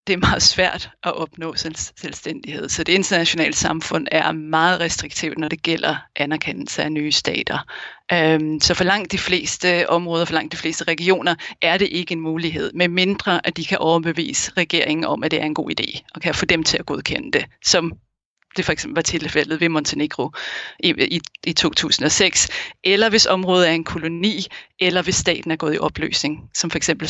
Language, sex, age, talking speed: Danish, female, 30-49, 190 wpm